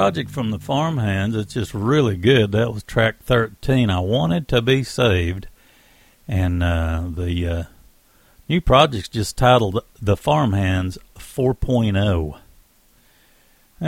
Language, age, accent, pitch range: English, 50-69, American, 100-145 Hz